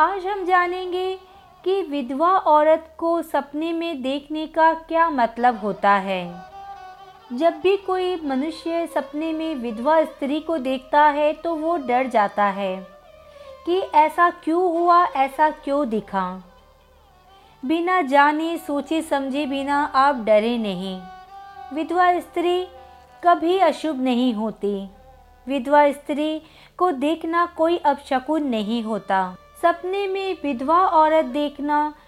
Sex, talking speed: female, 120 wpm